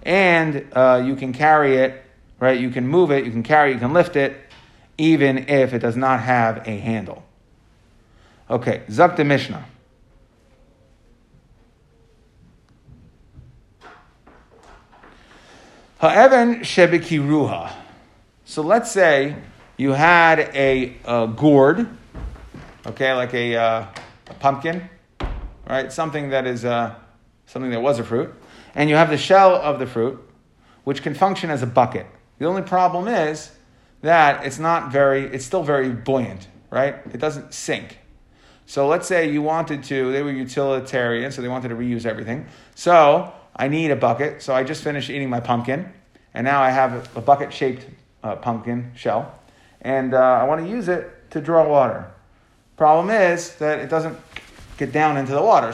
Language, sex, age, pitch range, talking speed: English, male, 50-69, 120-155 Hz, 150 wpm